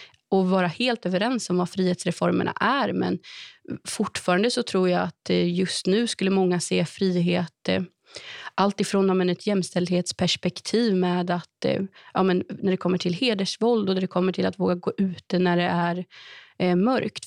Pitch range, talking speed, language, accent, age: 180-200 Hz, 160 wpm, Swedish, native, 30-49